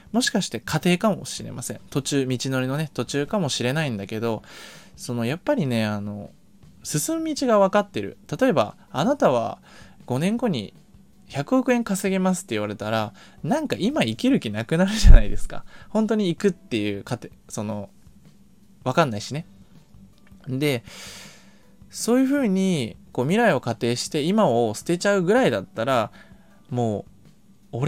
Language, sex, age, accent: Japanese, male, 20-39, native